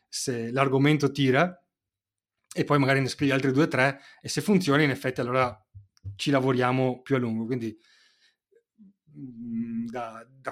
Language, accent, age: Italian, native, 30-49